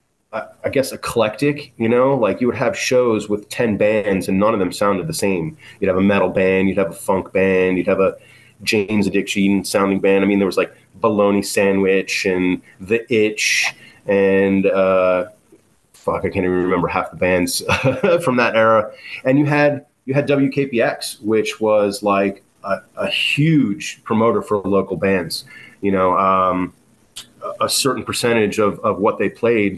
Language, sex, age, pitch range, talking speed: English, male, 30-49, 95-115 Hz, 175 wpm